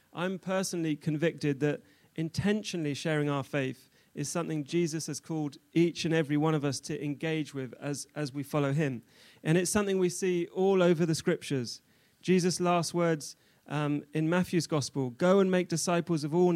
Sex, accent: male, British